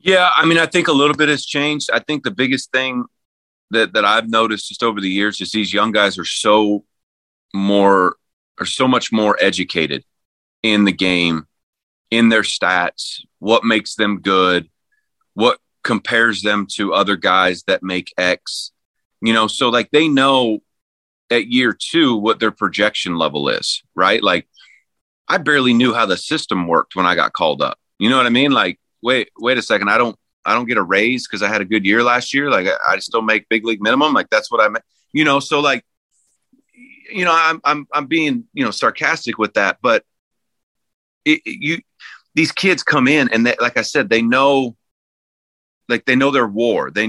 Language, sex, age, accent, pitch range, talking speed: English, male, 30-49, American, 100-140 Hz, 190 wpm